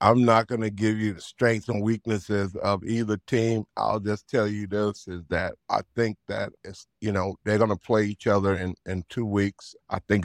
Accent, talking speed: American, 225 wpm